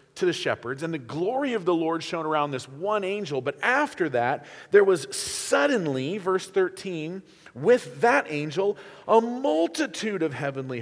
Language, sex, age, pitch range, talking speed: English, male, 40-59, 135-220 Hz, 160 wpm